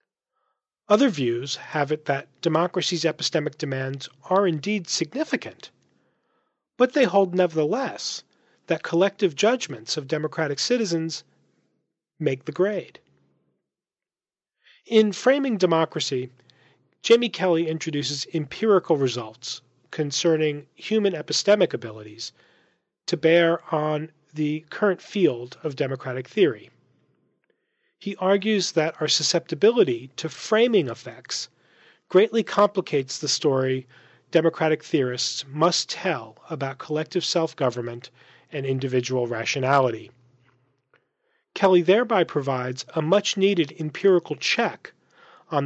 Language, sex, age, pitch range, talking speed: English, male, 40-59, 135-195 Hz, 100 wpm